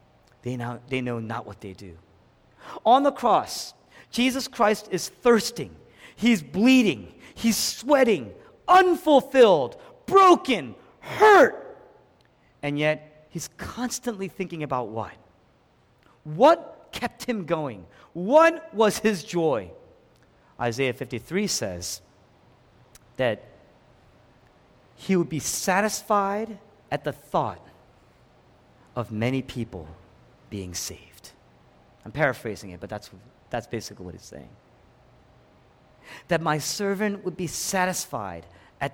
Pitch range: 120-200 Hz